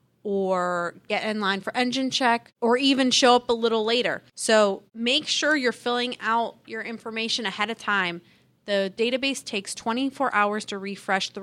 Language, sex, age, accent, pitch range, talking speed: English, female, 20-39, American, 190-235 Hz, 175 wpm